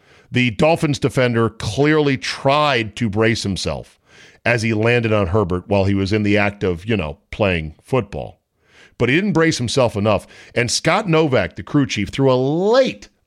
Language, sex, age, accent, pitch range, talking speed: English, male, 40-59, American, 100-130 Hz, 175 wpm